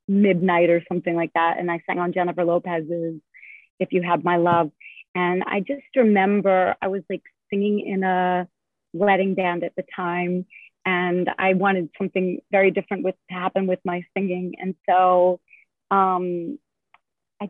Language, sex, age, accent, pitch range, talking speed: English, female, 30-49, American, 180-215 Hz, 160 wpm